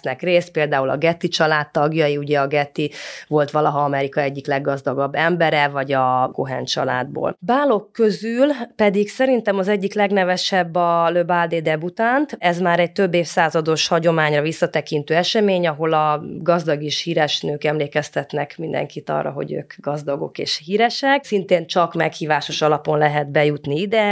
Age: 30-49